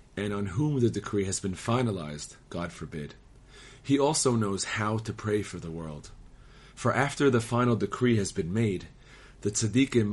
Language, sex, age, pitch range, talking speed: English, male, 40-59, 95-120 Hz, 170 wpm